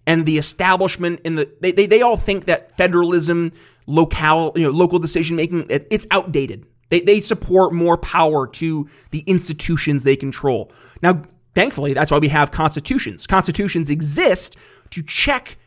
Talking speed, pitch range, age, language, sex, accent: 160 wpm, 145-185 Hz, 20-39, English, male, American